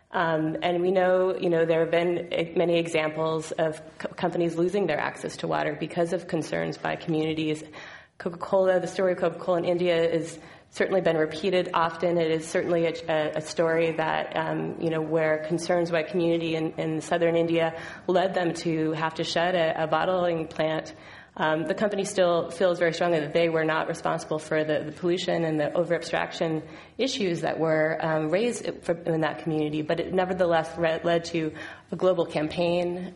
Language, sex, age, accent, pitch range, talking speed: English, female, 20-39, American, 160-175 Hz, 185 wpm